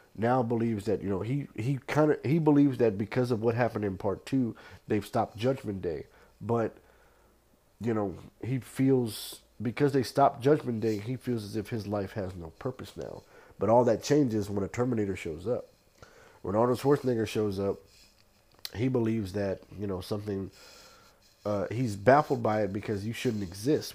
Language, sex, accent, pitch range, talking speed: English, male, American, 100-120 Hz, 180 wpm